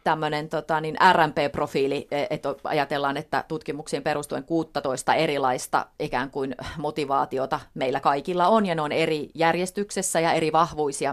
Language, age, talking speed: Finnish, 30-49, 135 wpm